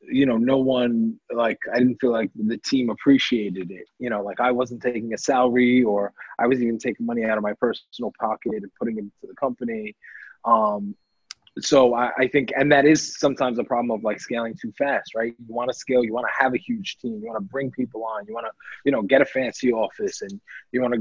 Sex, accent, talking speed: male, American, 245 wpm